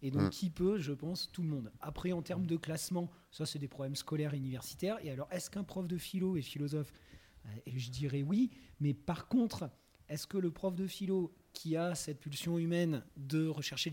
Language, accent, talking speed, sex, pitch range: French, French, 215 wpm, male, 145-180 Hz